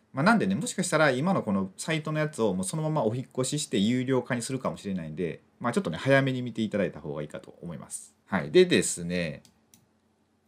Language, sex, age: Japanese, male, 30-49